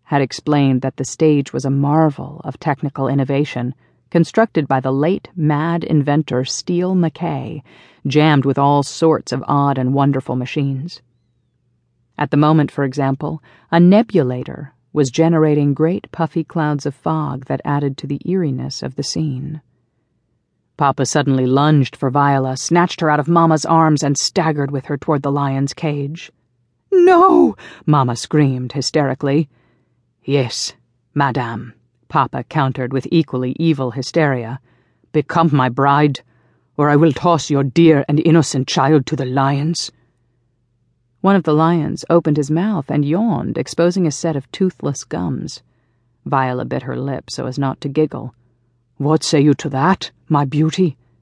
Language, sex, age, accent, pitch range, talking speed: English, female, 40-59, American, 130-155 Hz, 150 wpm